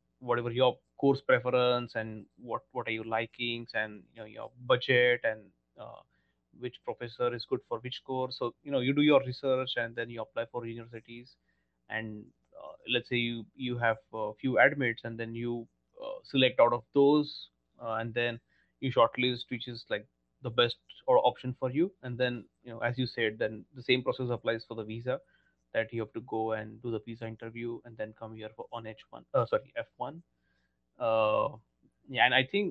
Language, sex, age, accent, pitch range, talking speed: Marathi, male, 20-39, native, 110-130 Hz, 200 wpm